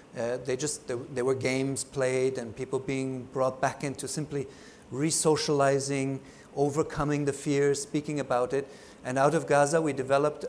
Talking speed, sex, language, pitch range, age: 155 wpm, male, English, 130-155 Hz, 50-69